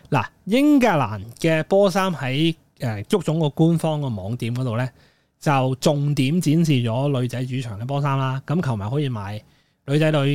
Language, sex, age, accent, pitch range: Chinese, male, 20-39, native, 125-160 Hz